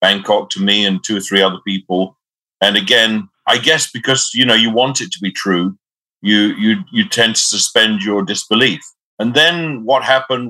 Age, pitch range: 50-69, 105-125 Hz